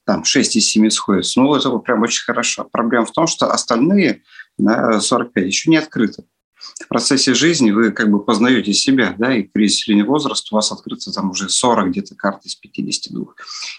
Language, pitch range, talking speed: Russian, 100-130 Hz, 180 wpm